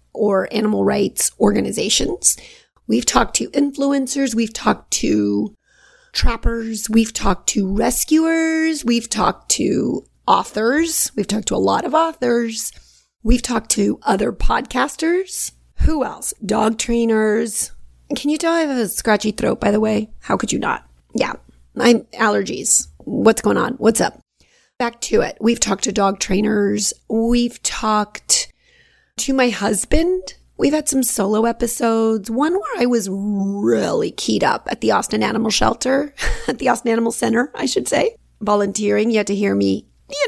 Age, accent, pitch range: 30-49, American, 210-250 Hz